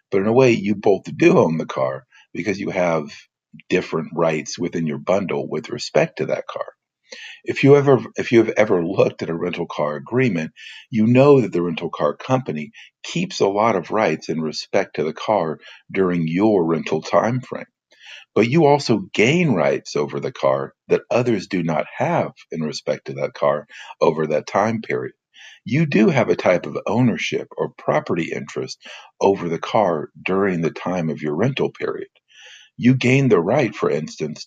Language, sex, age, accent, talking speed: English, male, 50-69, American, 185 wpm